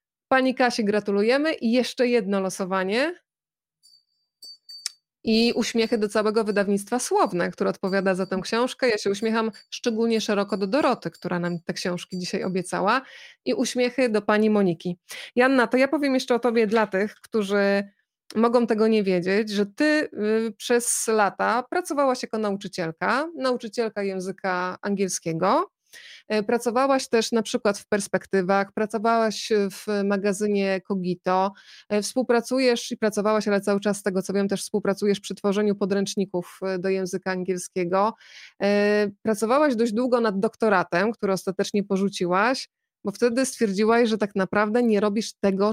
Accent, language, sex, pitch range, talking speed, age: native, Polish, female, 195-240 Hz, 140 wpm, 20-39